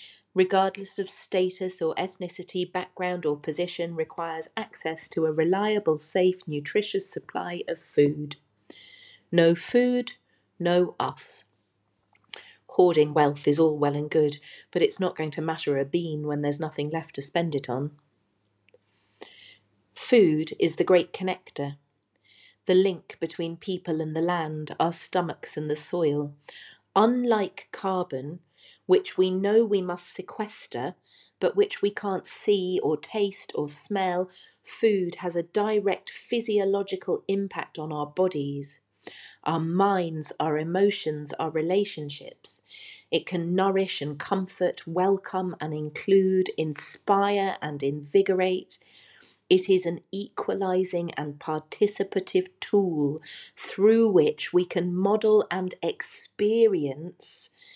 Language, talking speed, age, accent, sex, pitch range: English, 125 wpm, 40-59, British, female, 155-195 Hz